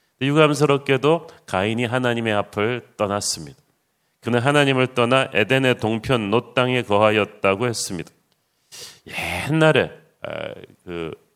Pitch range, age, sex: 115-140 Hz, 40-59, male